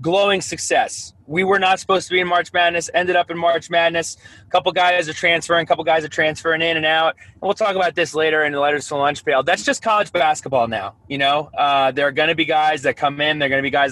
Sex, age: male, 20-39